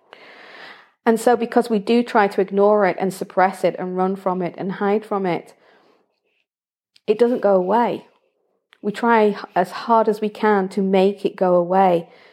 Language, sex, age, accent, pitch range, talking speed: English, female, 40-59, British, 180-215 Hz, 175 wpm